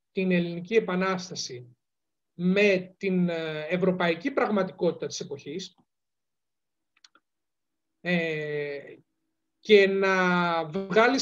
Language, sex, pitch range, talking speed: Greek, male, 185-250 Hz, 65 wpm